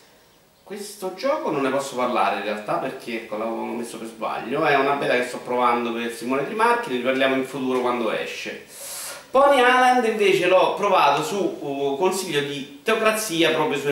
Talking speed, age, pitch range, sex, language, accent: 175 wpm, 40-59, 125-160 Hz, male, Italian, native